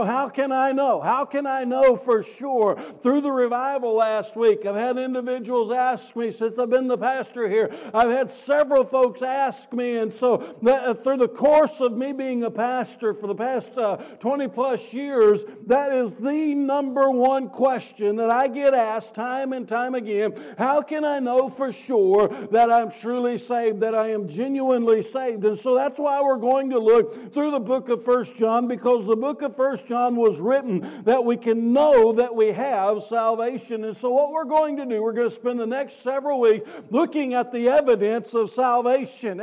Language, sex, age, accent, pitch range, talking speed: English, male, 60-79, American, 230-270 Hz, 200 wpm